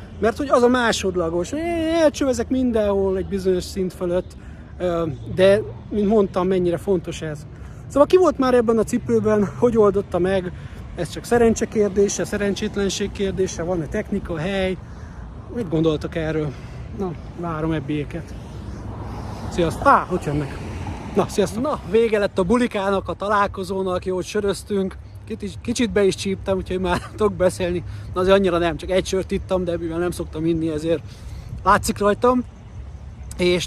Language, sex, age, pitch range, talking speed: Hungarian, male, 30-49, 155-205 Hz, 150 wpm